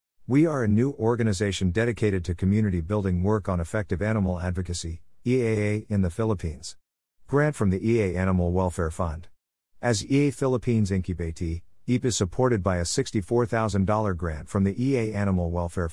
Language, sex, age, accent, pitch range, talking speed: English, male, 50-69, American, 90-115 Hz, 155 wpm